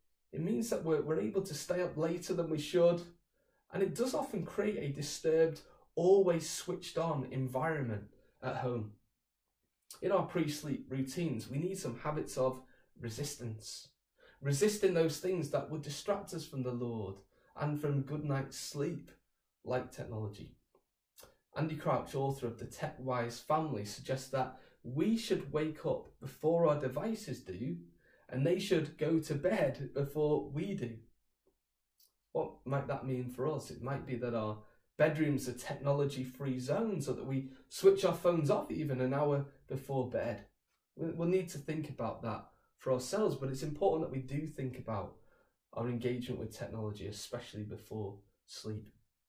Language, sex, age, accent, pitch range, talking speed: English, male, 10-29, British, 125-165 Hz, 160 wpm